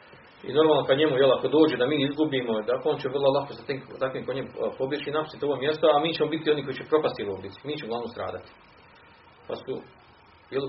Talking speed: 215 wpm